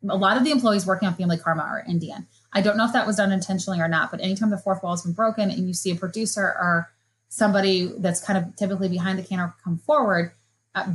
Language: English